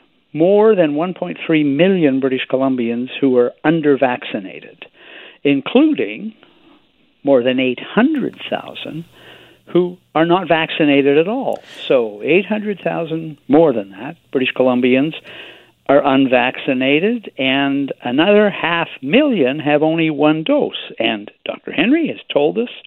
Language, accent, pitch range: English, American, 140-210 Hz